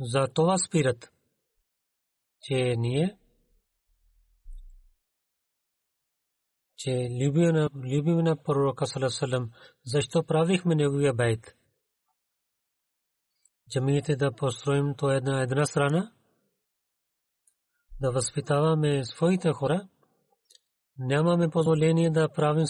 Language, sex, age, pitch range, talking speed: Bulgarian, male, 40-59, 130-155 Hz, 85 wpm